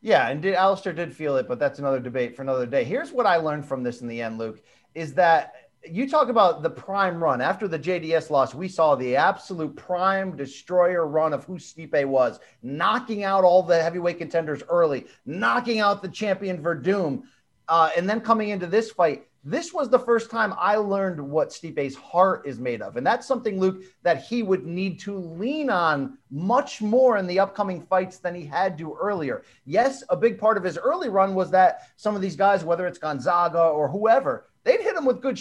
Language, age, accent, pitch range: English, 30-49, American, 165-225 Hz